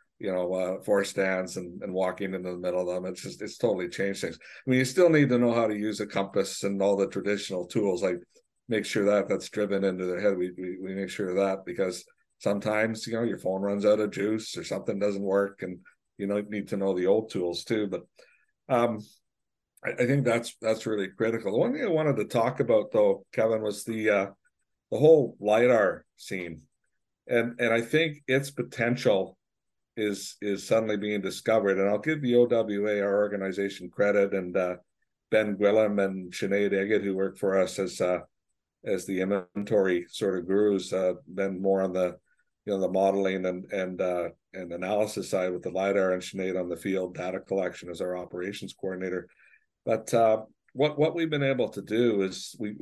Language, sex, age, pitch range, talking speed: English, male, 60-79, 95-110 Hz, 205 wpm